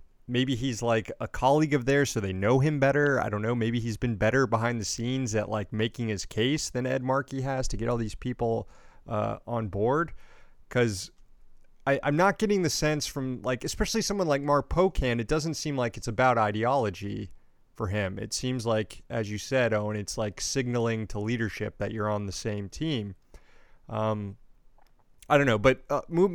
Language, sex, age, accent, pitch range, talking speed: English, male, 30-49, American, 110-140 Hz, 200 wpm